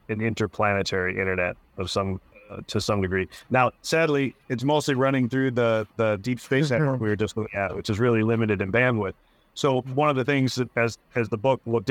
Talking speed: 210 wpm